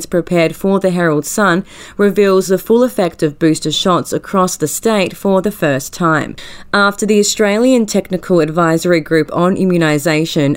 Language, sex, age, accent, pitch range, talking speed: English, female, 30-49, Australian, 155-185 Hz, 155 wpm